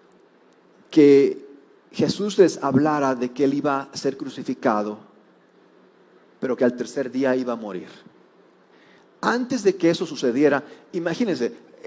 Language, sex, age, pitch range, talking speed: Spanish, male, 40-59, 150-235 Hz, 125 wpm